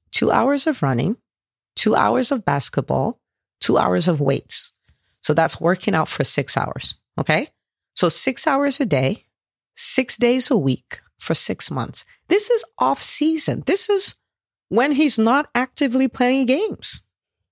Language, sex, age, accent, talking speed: English, female, 40-59, American, 150 wpm